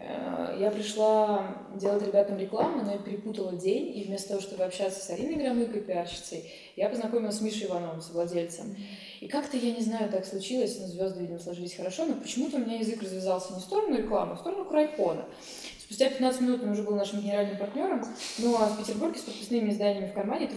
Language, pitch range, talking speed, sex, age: Russian, 180-220 Hz, 200 wpm, female, 20-39